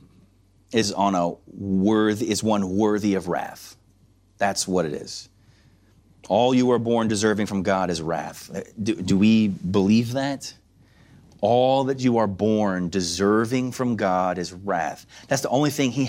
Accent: American